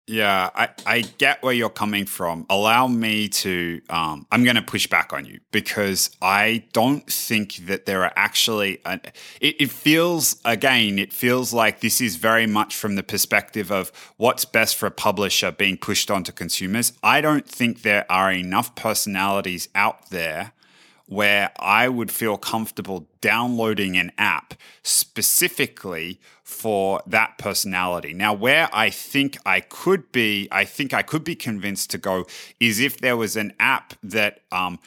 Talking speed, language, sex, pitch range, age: 160 wpm, English, male, 95-120 Hz, 20-39